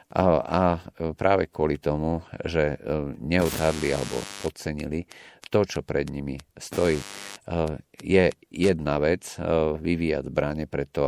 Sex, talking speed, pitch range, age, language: male, 105 wpm, 70-85 Hz, 50-69, Slovak